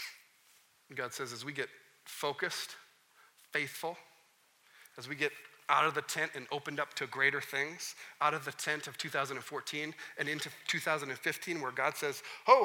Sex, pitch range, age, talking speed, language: male, 140-180 Hz, 40-59, 155 wpm, English